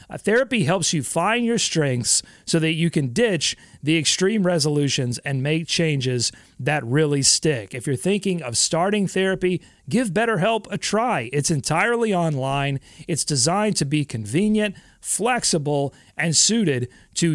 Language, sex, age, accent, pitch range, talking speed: English, male, 30-49, American, 145-205 Hz, 145 wpm